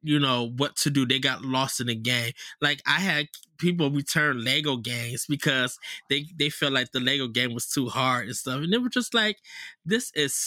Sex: male